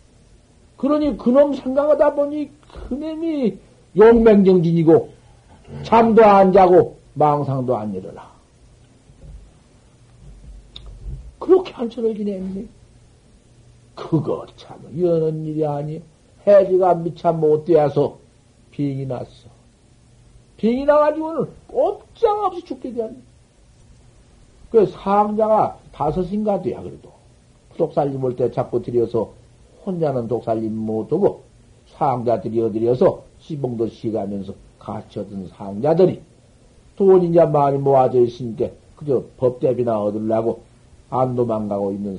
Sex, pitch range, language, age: male, 115-190 Hz, Korean, 60-79